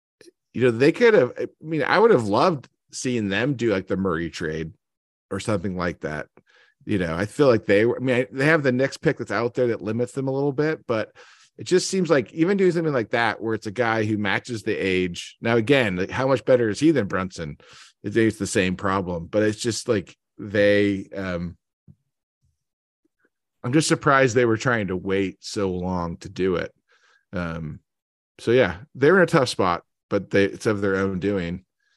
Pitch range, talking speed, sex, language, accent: 95-125 Hz, 210 wpm, male, English, American